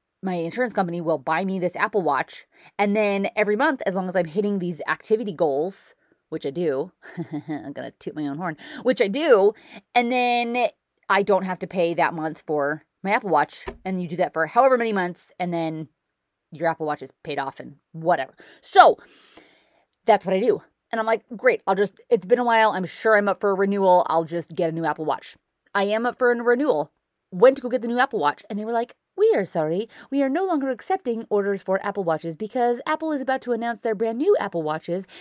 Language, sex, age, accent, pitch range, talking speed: English, female, 20-39, American, 180-250 Hz, 230 wpm